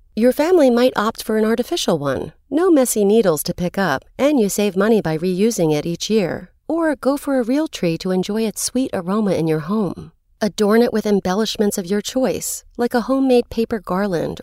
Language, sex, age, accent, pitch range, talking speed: English, female, 40-59, American, 180-250 Hz, 205 wpm